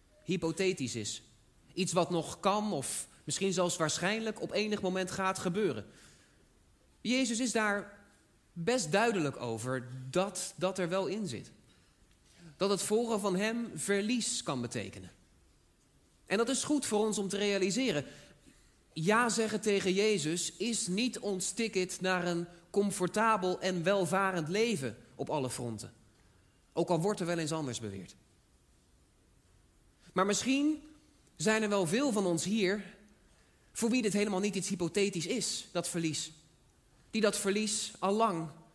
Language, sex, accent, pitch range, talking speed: Dutch, male, Dutch, 125-200 Hz, 145 wpm